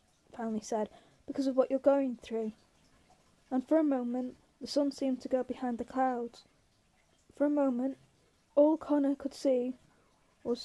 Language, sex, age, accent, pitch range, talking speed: English, female, 20-39, British, 240-275 Hz, 160 wpm